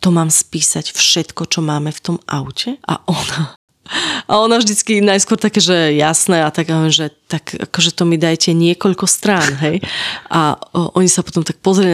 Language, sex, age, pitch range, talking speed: Slovak, female, 20-39, 160-185 Hz, 180 wpm